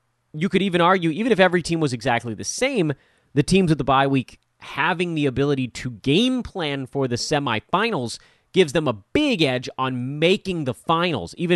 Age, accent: 30-49, American